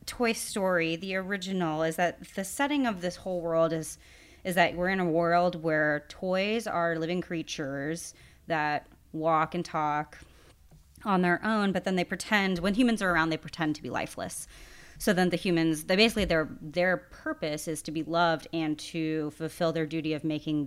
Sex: female